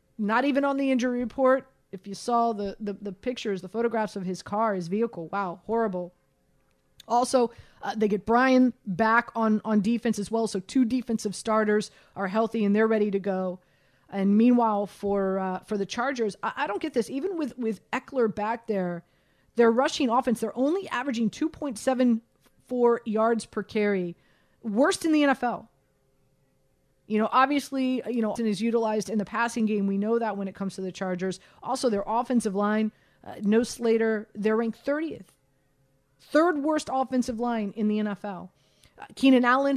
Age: 30-49